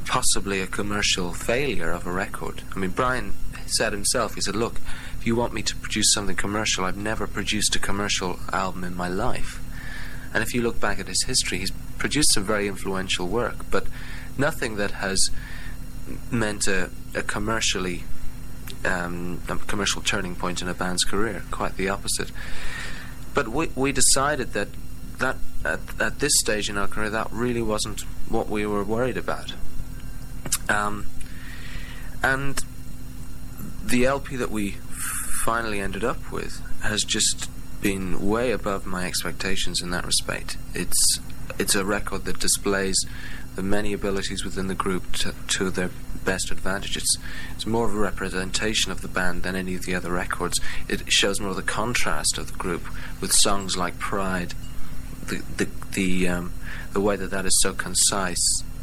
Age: 30-49